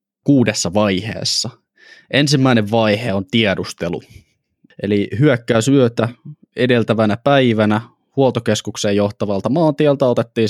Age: 20-39